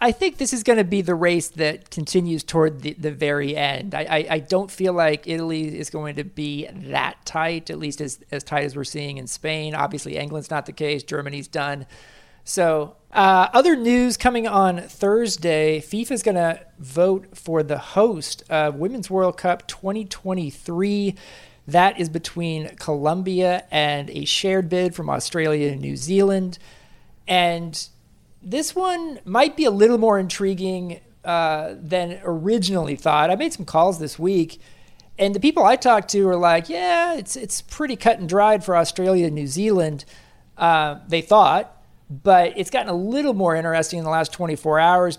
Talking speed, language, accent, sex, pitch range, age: 175 wpm, English, American, male, 150-190 Hz, 40-59